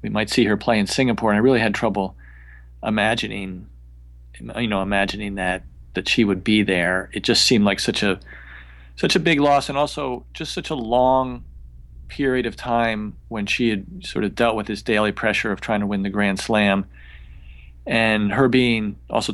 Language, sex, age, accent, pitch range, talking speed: English, male, 40-59, American, 90-115 Hz, 190 wpm